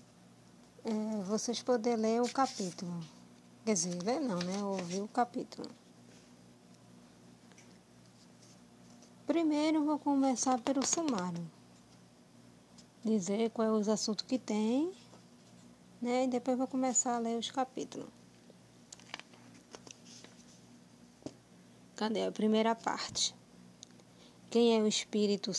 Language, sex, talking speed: Portuguese, female, 100 wpm